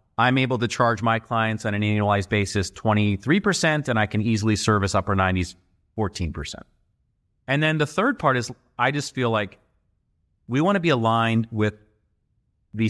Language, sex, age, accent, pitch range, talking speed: English, male, 30-49, American, 100-115 Hz, 165 wpm